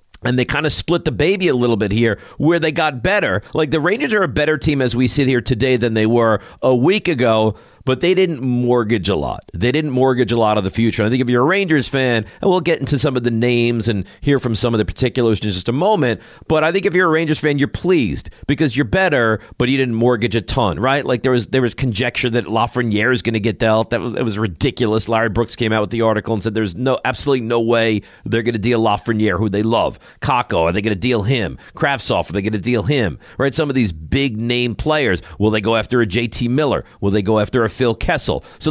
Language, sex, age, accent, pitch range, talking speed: English, male, 40-59, American, 110-150 Hz, 260 wpm